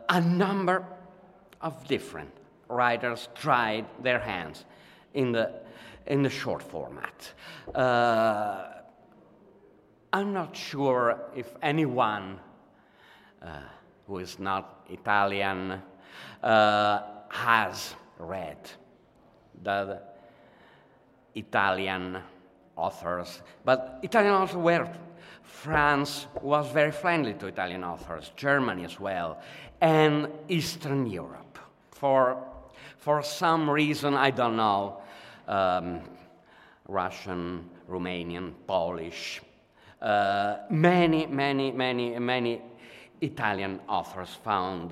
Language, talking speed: Italian, 90 wpm